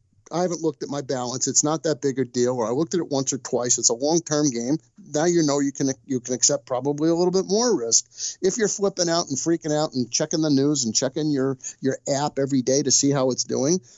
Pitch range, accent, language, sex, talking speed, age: 120-160 Hz, American, English, male, 265 wpm, 50-69